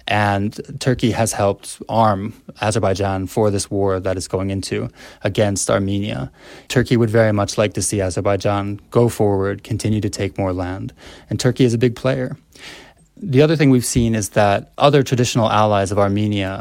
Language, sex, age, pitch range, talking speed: English, male, 20-39, 100-115 Hz, 175 wpm